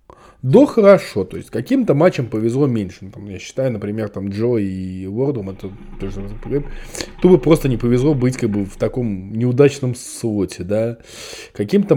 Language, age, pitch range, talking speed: Russian, 20-39, 100-145 Hz, 155 wpm